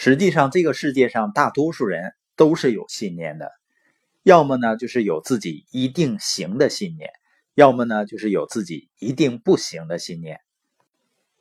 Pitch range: 125-190 Hz